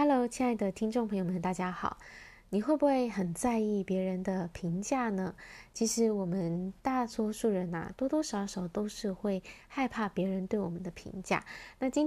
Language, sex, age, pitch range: Chinese, female, 20-39, 180-235 Hz